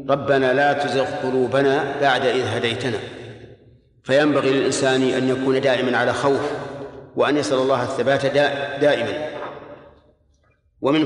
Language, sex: Arabic, male